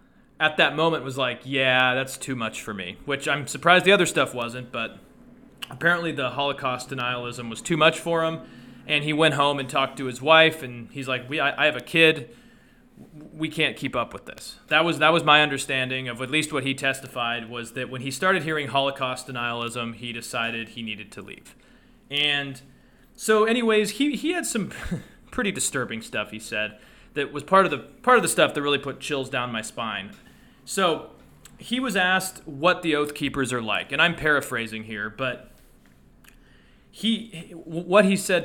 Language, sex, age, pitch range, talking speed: English, male, 30-49, 125-165 Hz, 195 wpm